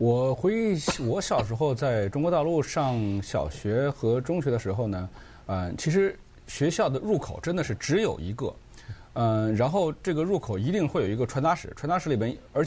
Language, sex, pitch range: Chinese, male, 115-160 Hz